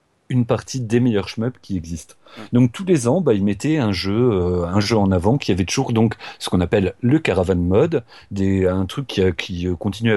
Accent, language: French, French